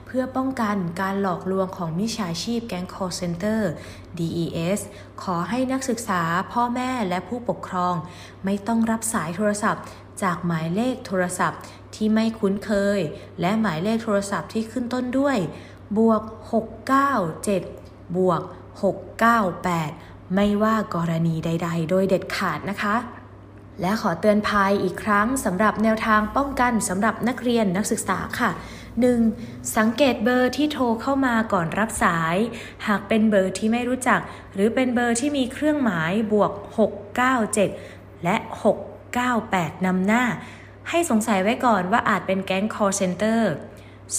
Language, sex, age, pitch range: Thai, female, 20-39, 185-230 Hz